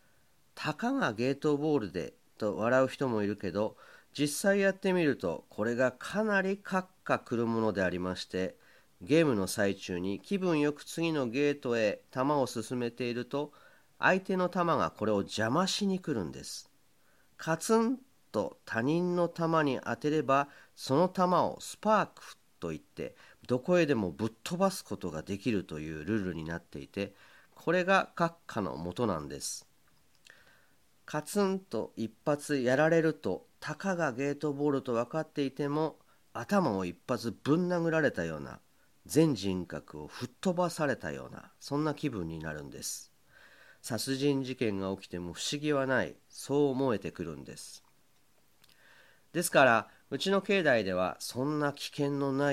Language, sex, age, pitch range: Japanese, male, 40-59, 100-160 Hz